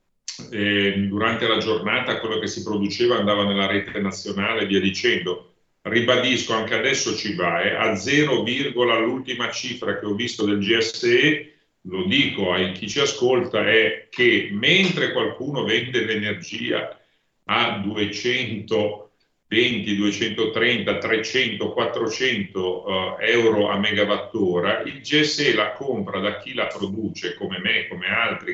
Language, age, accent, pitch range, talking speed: Italian, 40-59, native, 105-125 Hz, 135 wpm